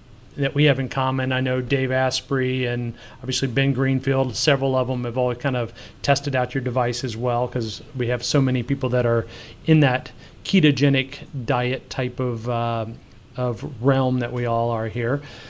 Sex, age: male, 40-59